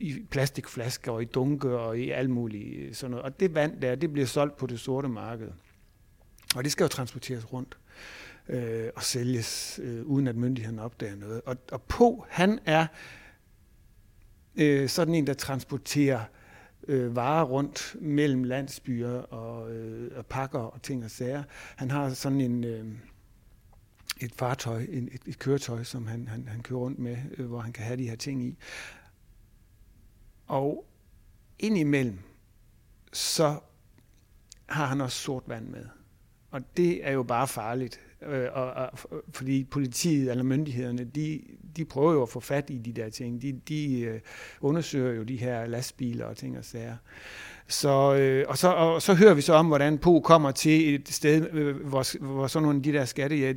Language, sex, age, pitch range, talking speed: Danish, male, 60-79, 115-140 Hz, 170 wpm